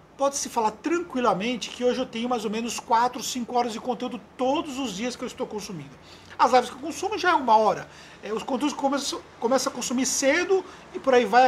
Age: 50-69